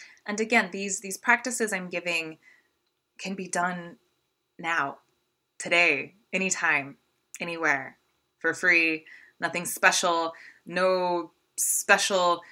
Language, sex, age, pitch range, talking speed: English, female, 20-39, 150-185 Hz, 95 wpm